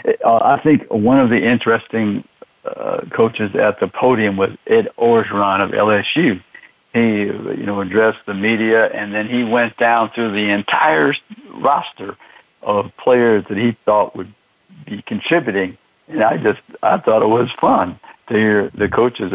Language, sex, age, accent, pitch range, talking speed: English, male, 60-79, American, 100-115 Hz, 160 wpm